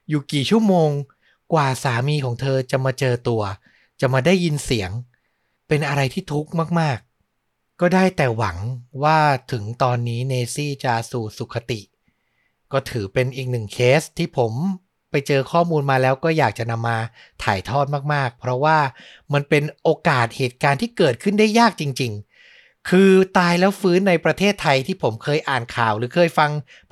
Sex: male